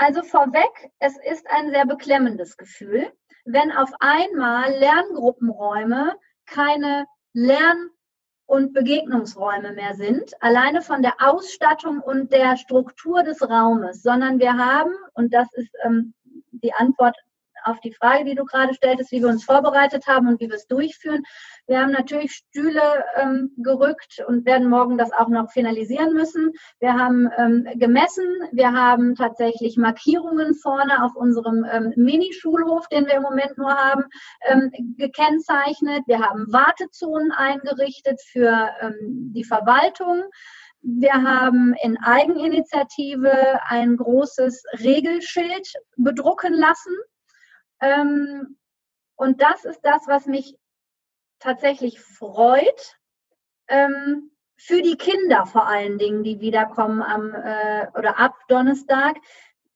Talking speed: 125 wpm